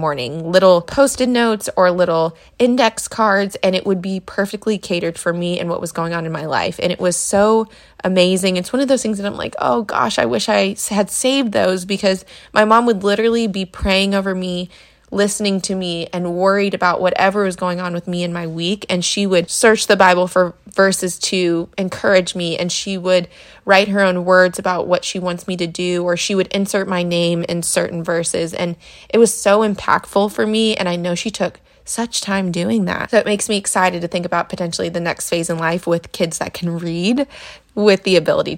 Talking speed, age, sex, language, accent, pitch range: 220 wpm, 20-39, female, English, American, 175-205 Hz